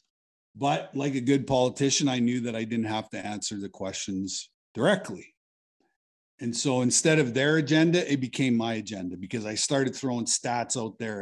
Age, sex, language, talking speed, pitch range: 50-69, male, English, 175 wpm, 110-145 Hz